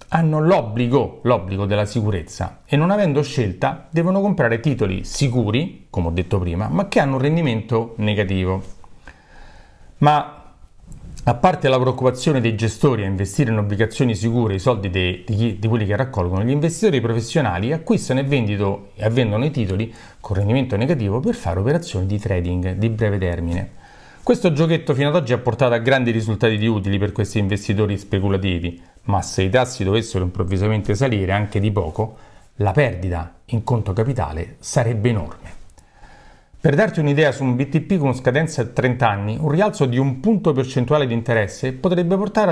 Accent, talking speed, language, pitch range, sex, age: native, 160 wpm, Italian, 100-140 Hz, male, 40-59